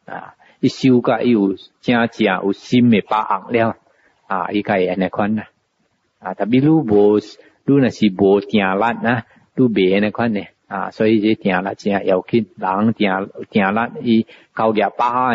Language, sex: English, male